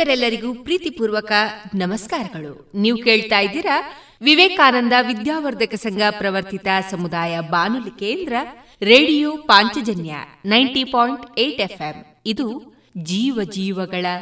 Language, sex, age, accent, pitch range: Kannada, female, 30-49, native, 190-270 Hz